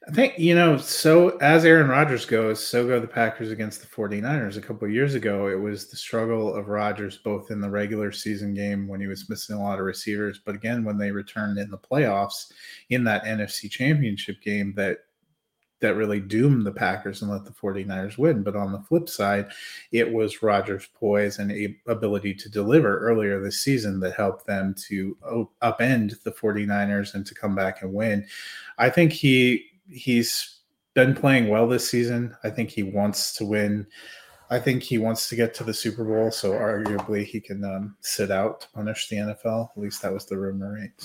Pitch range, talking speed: 100-115 Hz, 200 wpm